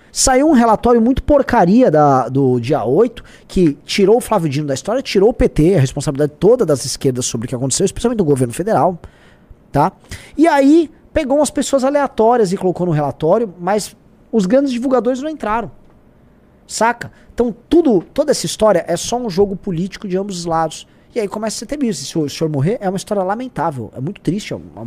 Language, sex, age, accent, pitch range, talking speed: Portuguese, male, 20-39, Brazilian, 135-215 Hz, 195 wpm